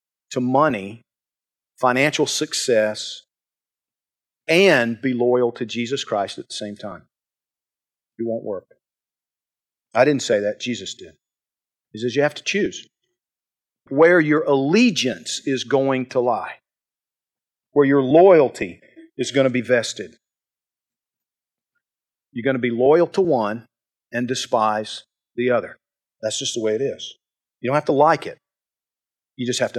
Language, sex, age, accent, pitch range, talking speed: English, male, 50-69, American, 120-165 Hz, 145 wpm